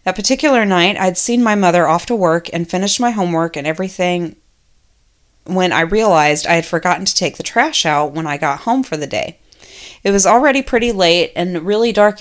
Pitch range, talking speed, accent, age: 165-210 Hz, 205 wpm, American, 30-49